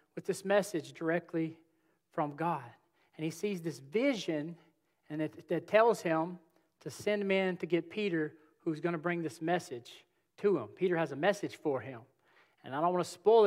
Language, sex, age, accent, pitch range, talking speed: English, male, 40-59, American, 160-200 Hz, 185 wpm